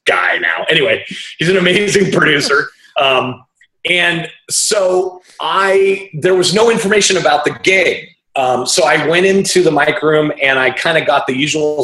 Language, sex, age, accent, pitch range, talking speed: English, male, 30-49, American, 130-185 Hz, 165 wpm